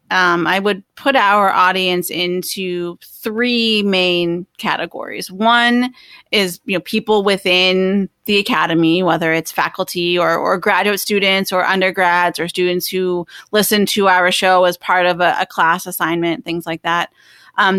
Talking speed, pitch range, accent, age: 155 wpm, 180-215 Hz, American, 30-49